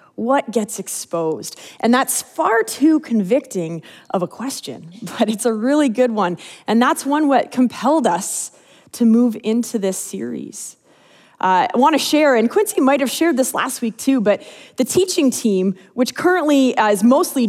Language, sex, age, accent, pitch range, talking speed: English, female, 20-39, American, 195-265 Hz, 170 wpm